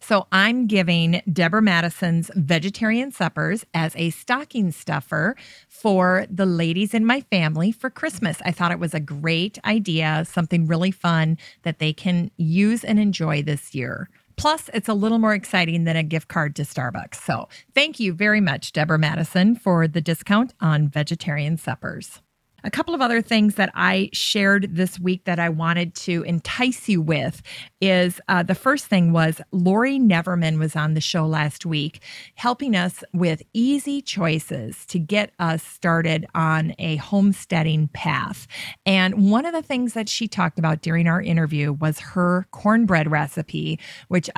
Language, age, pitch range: English, 40-59, 160-200 Hz